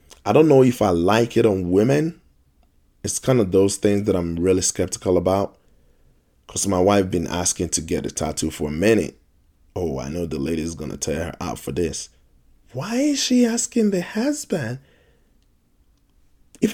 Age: 20-39